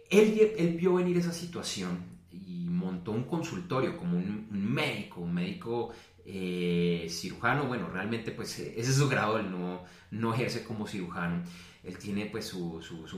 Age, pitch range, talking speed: 30-49, 90-140 Hz, 170 wpm